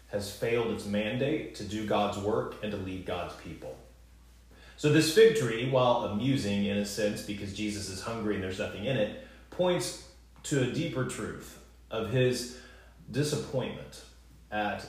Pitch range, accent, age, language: 70-115 Hz, American, 30-49, English